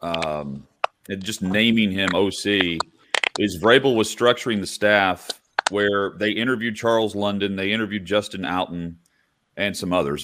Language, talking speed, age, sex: English, 140 wpm, 40-59, male